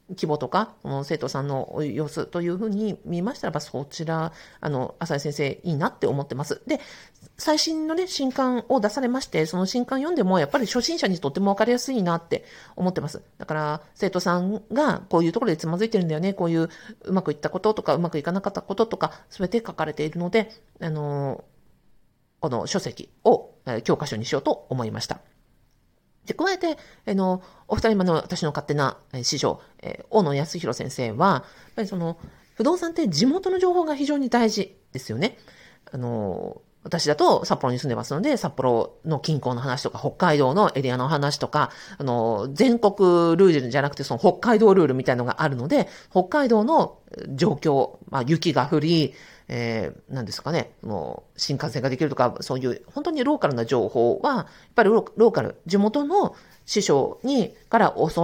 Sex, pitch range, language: female, 145-225 Hz, Japanese